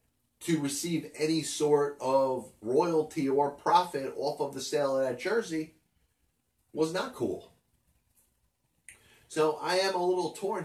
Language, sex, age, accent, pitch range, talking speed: English, male, 30-49, American, 120-150 Hz, 135 wpm